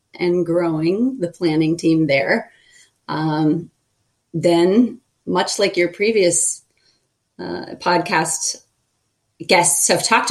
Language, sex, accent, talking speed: English, female, American, 100 wpm